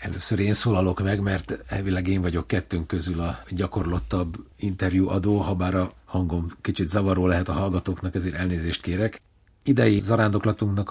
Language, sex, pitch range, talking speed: Hungarian, male, 90-105 Hz, 145 wpm